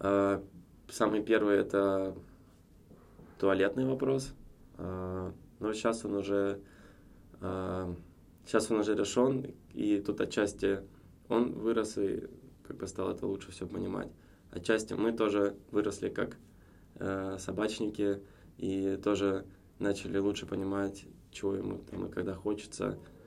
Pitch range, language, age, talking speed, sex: 90-105 Hz, Russian, 20-39, 110 wpm, male